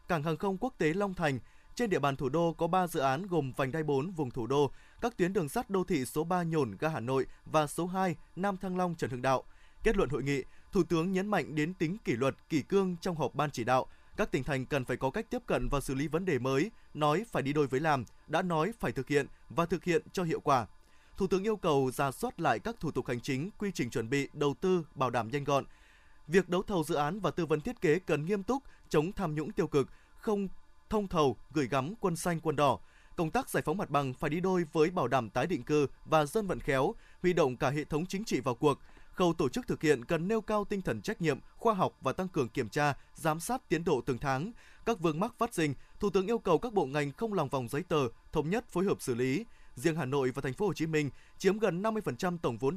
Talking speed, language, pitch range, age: 265 wpm, Vietnamese, 140-185 Hz, 20-39